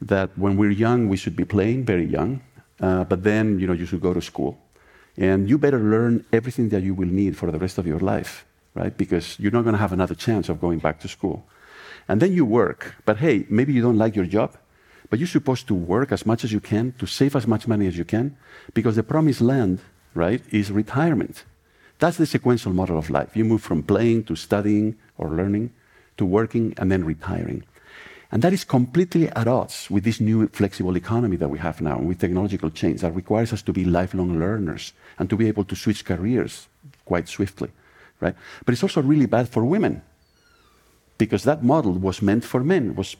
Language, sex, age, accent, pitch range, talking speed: English, male, 50-69, Spanish, 90-120 Hz, 215 wpm